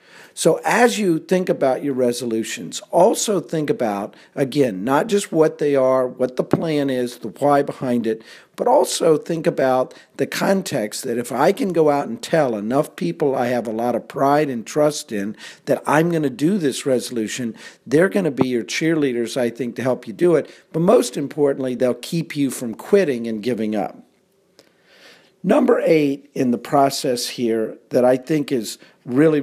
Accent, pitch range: American, 125-155 Hz